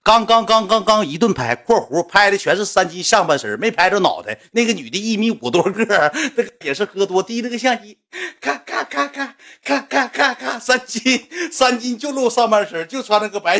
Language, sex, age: Chinese, male, 50-69